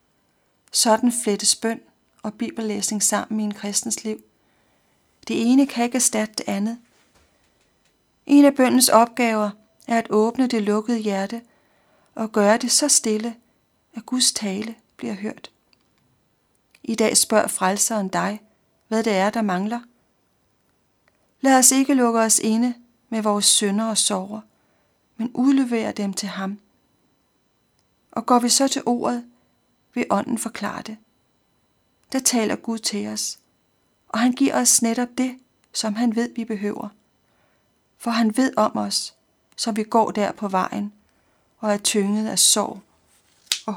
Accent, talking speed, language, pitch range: native, 145 wpm, Danish, 205-240 Hz